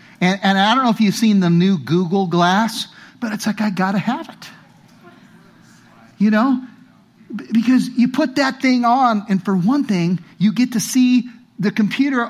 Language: English